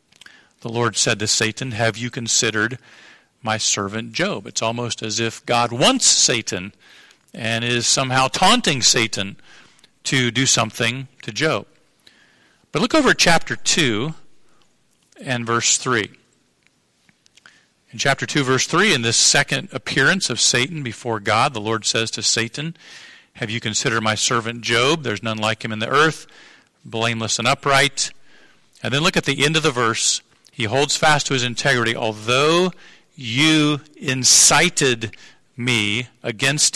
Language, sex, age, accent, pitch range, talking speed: English, male, 50-69, American, 115-150 Hz, 150 wpm